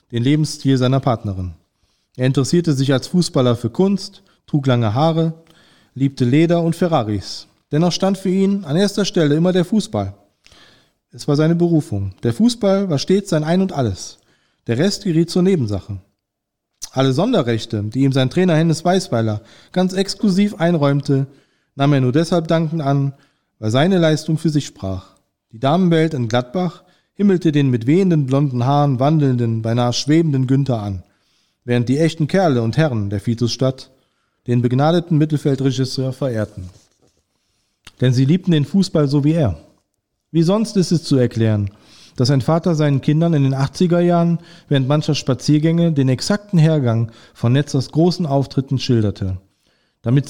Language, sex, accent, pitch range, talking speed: German, male, German, 120-165 Hz, 155 wpm